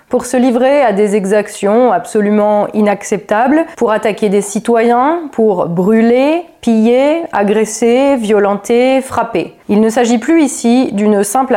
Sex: female